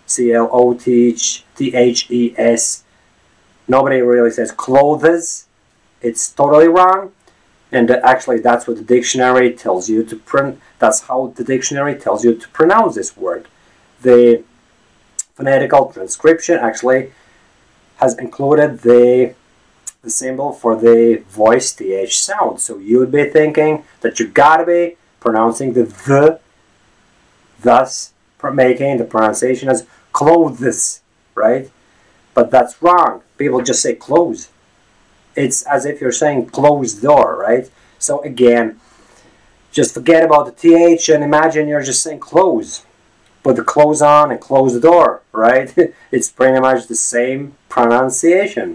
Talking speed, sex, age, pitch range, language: 140 wpm, male, 40-59, 115-145 Hz, English